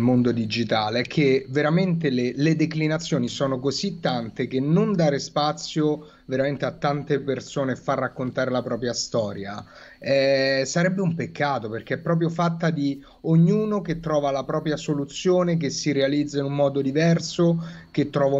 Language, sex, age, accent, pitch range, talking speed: Italian, male, 30-49, native, 130-155 Hz, 155 wpm